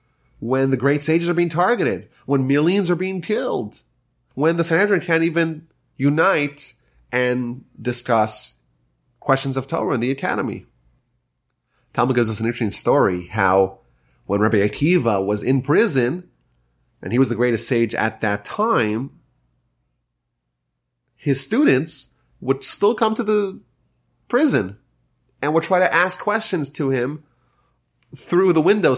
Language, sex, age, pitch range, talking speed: English, male, 30-49, 120-165 Hz, 140 wpm